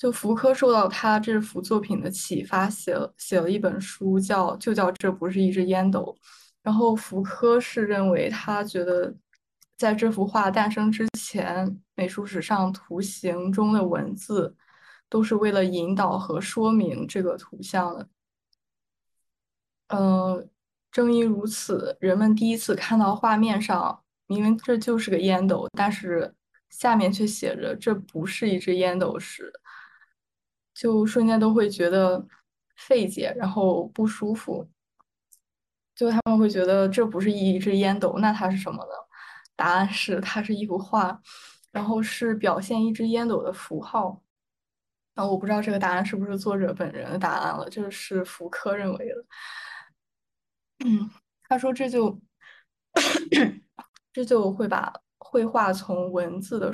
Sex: female